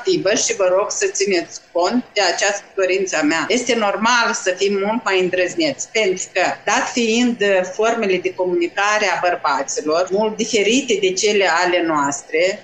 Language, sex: Romanian, female